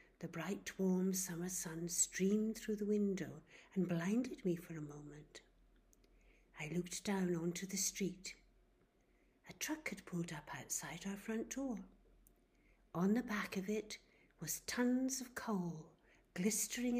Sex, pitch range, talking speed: female, 165-210 Hz, 140 wpm